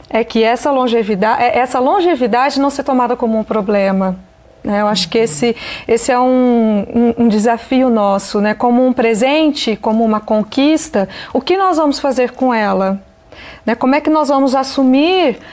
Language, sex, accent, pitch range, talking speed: Portuguese, female, Brazilian, 215-265 Hz, 175 wpm